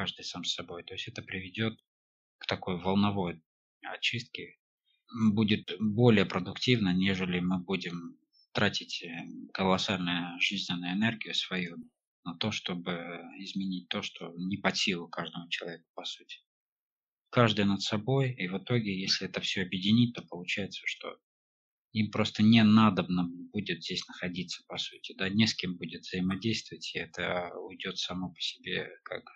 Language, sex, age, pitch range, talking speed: Russian, male, 20-39, 90-110 Hz, 145 wpm